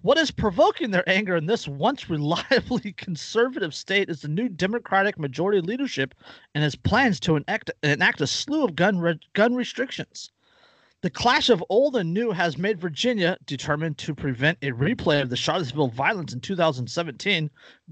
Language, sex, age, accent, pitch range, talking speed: English, male, 40-59, American, 150-220 Hz, 165 wpm